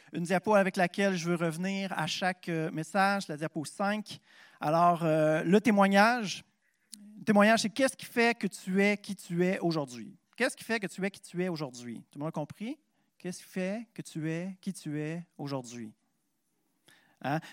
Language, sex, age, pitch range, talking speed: French, male, 40-59, 160-205 Hz, 190 wpm